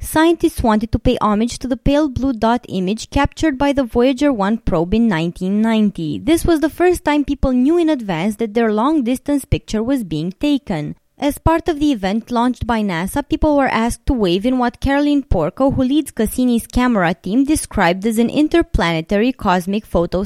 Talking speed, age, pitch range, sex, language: 185 wpm, 20-39, 195-280 Hz, female, English